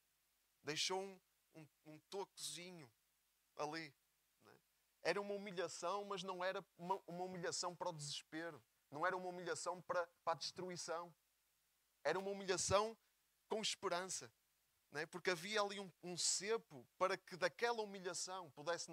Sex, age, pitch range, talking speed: male, 20-39, 140-180 Hz, 130 wpm